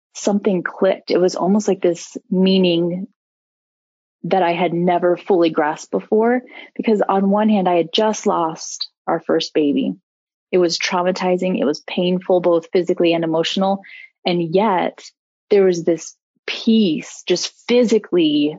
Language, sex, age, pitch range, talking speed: English, female, 30-49, 170-205 Hz, 140 wpm